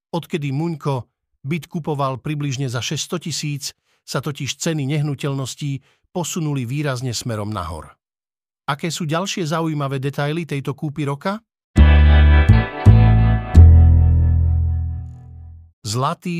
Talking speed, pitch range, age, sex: 90 wpm, 130-155 Hz, 50-69, male